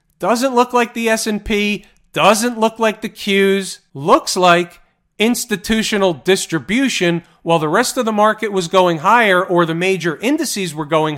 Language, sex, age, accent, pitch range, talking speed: English, male, 40-59, American, 165-215 Hz, 155 wpm